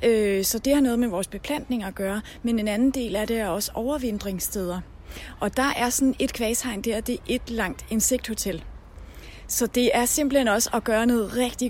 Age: 30-49